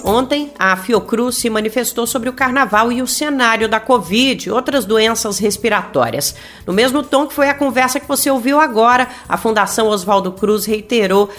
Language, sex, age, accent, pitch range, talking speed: Portuguese, female, 40-59, Brazilian, 200-250 Hz, 170 wpm